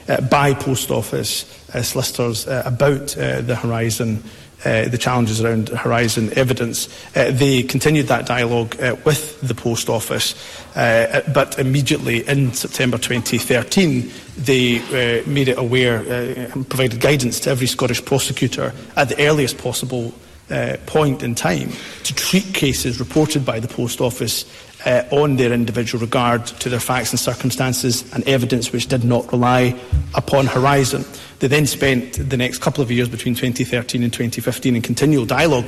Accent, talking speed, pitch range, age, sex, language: British, 165 wpm, 120-135 Hz, 40-59, male, English